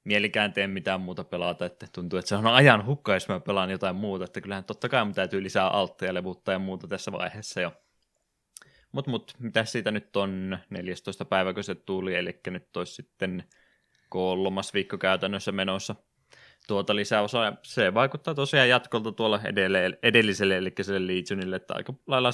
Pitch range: 90-110 Hz